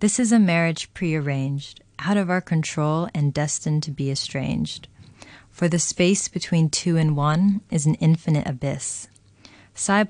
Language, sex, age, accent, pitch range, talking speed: English, female, 20-39, American, 140-170 Hz, 155 wpm